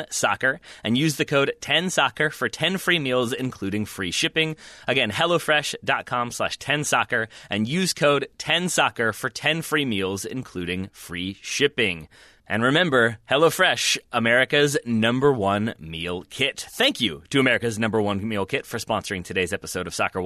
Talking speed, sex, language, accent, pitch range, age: 150 wpm, male, English, American, 105-155 Hz, 30-49